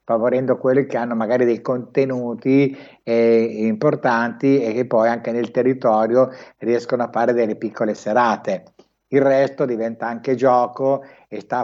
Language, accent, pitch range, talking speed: Italian, native, 115-130 Hz, 145 wpm